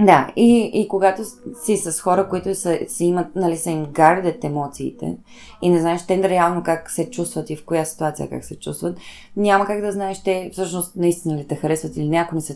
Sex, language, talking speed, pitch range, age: female, Bulgarian, 215 wpm, 160-215 Hz, 20-39